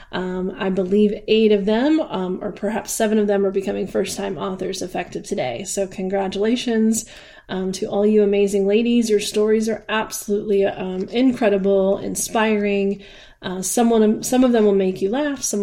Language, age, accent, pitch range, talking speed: English, 30-49, American, 195-225 Hz, 165 wpm